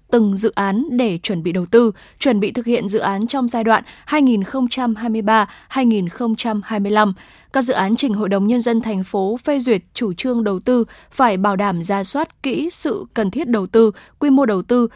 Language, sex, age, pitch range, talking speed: Vietnamese, female, 10-29, 205-245 Hz, 195 wpm